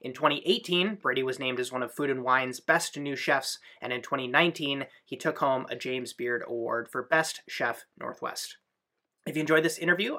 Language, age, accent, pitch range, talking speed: English, 20-39, American, 135-175 Hz, 190 wpm